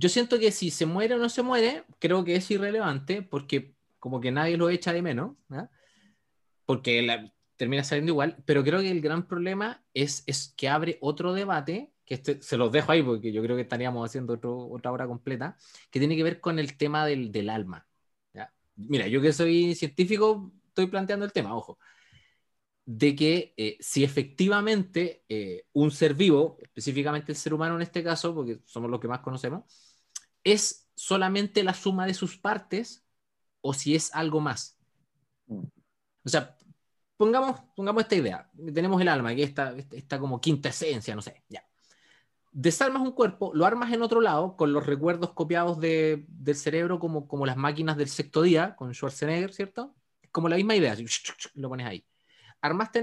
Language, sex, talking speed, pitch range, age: Spanish, male, 185 wpm, 140-185 Hz, 20-39